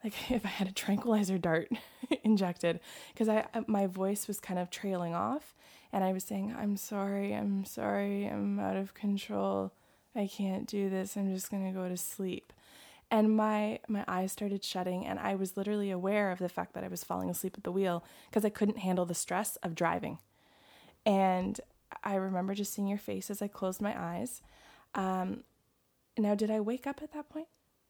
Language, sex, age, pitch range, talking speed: English, female, 20-39, 185-225 Hz, 195 wpm